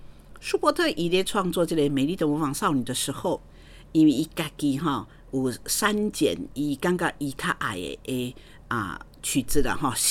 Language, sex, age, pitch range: Chinese, female, 50-69, 130-175 Hz